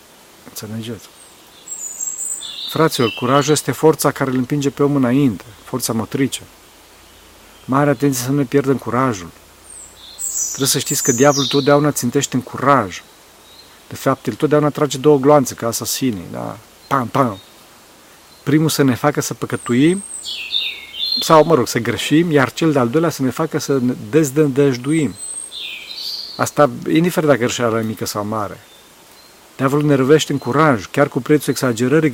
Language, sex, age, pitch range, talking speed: Romanian, male, 40-59, 120-145 Hz, 140 wpm